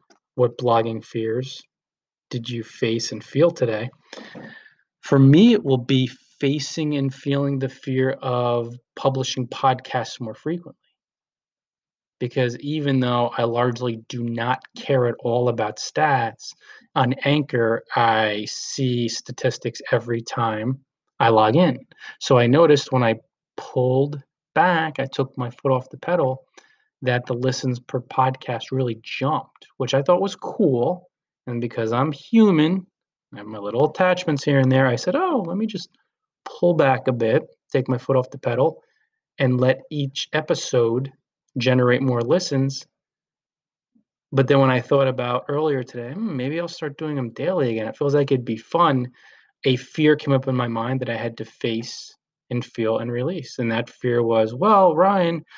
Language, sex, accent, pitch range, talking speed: English, male, American, 120-145 Hz, 165 wpm